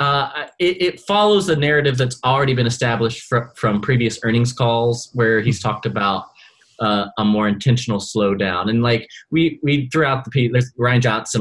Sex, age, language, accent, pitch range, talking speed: male, 20-39, English, American, 105-130 Hz, 175 wpm